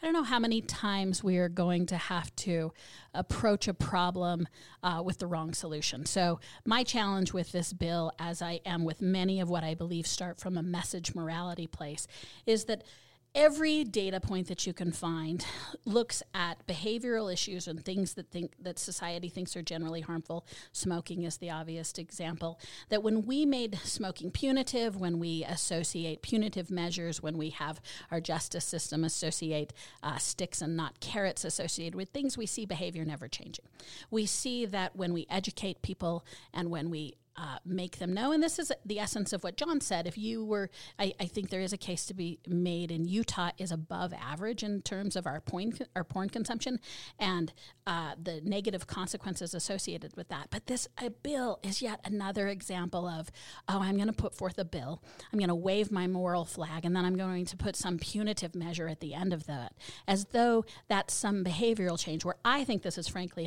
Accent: American